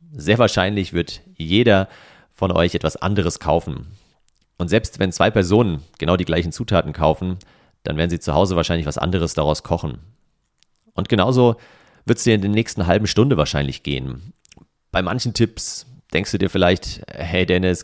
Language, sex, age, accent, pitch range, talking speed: German, male, 40-59, German, 85-105 Hz, 170 wpm